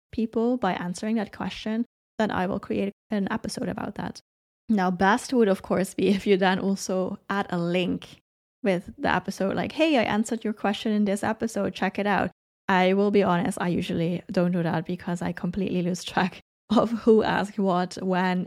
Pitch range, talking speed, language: 185-230 Hz, 195 wpm, English